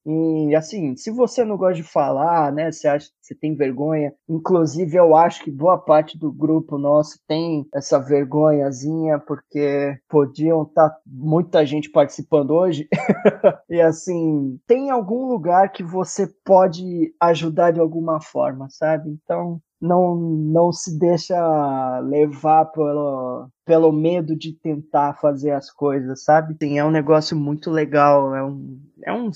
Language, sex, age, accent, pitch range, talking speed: Portuguese, male, 20-39, Brazilian, 145-170 Hz, 145 wpm